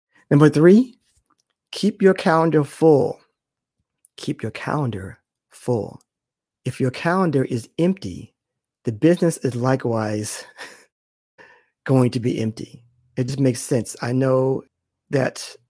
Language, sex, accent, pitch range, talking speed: English, male, American, 125-160 Hz, 115 wpm